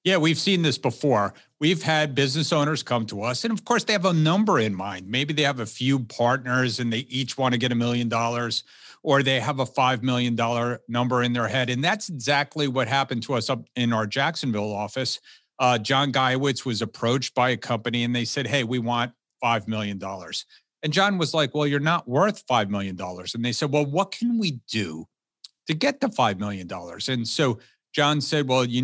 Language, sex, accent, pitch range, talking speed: English, male, American, 115-150 Hz, 215 wpm